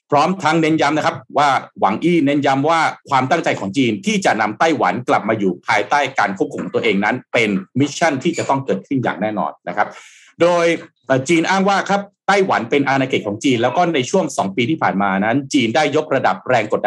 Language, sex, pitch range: Thai, male, 125-185 Hz